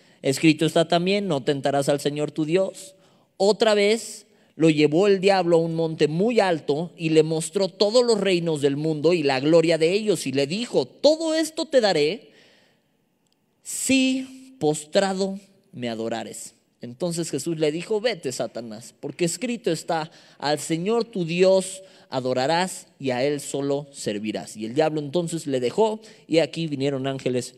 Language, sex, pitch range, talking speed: Spanish, male, 150-230 Hz, 160 wpm